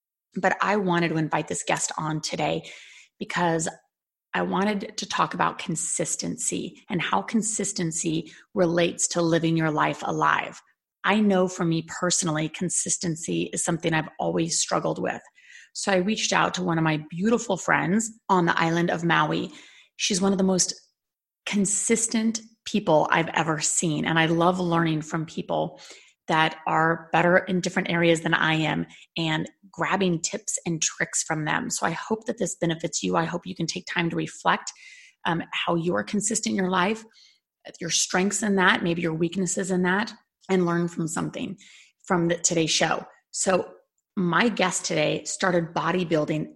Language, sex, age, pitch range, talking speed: English, female, 30-49, 165-200 Hz, 170 wpm